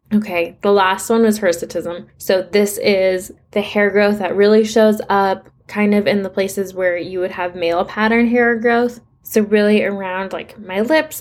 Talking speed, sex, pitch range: 185 wpm, female, 185-225 Hz